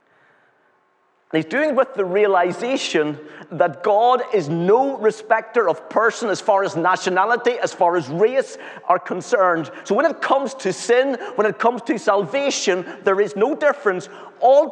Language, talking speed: English, 160 wpm